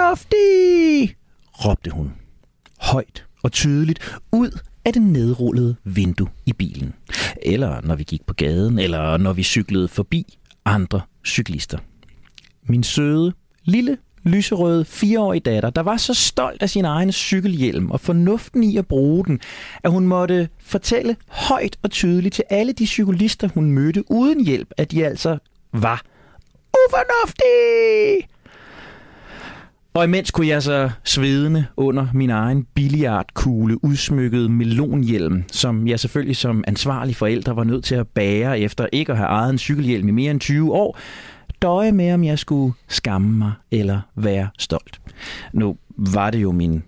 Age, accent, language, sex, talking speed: 40-59, native, Danish, male, 150 wpm